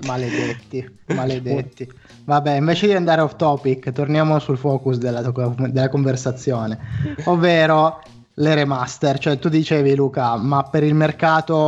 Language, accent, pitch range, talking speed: Italian, native, 125-155 Hz, 130 wpm